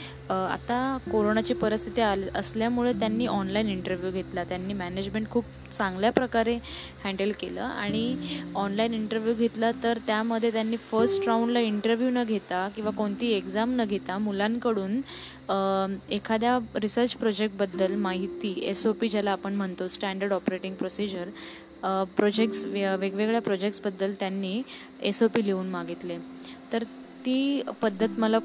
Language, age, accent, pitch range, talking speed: Marathi, 20-39, native, 195-225 Hz, 125 wpm